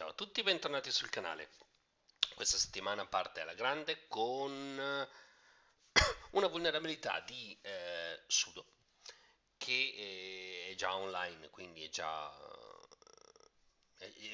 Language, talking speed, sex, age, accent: Italian, 110 wpm, male, 40-59, native